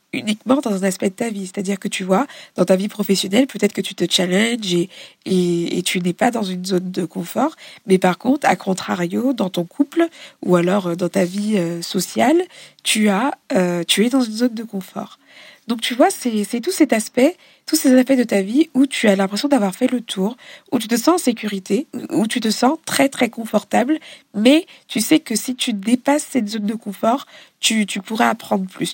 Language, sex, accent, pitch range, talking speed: French, female, French, 195-265 Hz, 220 wpm